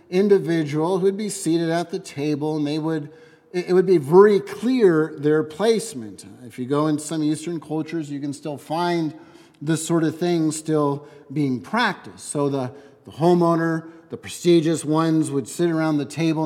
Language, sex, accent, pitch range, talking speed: English, male, American, 155-195 Hz, 170 wpm